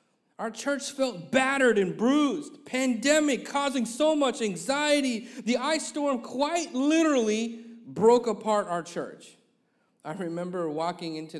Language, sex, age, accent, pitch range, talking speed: English, male, 40-59, American, 160-235 Hz, 125 wpm